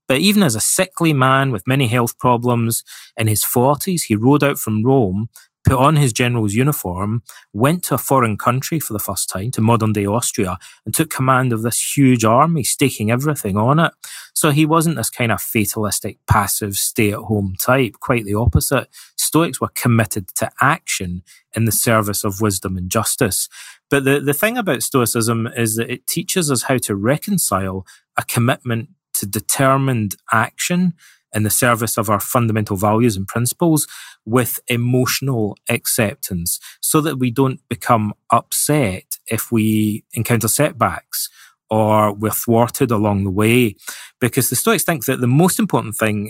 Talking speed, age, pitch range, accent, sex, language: 165 wpm, 30-49, 105-135 Hz, British, male, English